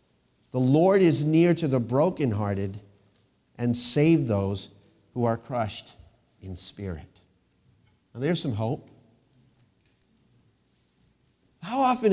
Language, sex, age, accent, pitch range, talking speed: English, male, 50-69, American, 115-180 Hz, 105 wpm